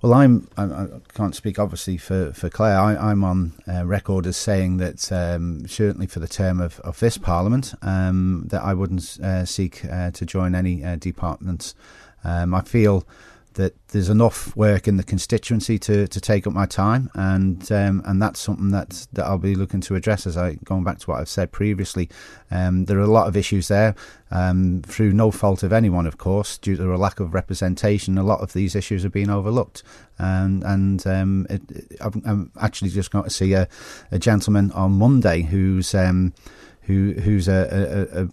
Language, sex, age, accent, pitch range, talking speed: English, male, 30-49, British, 95-105 Hz, 195 wpm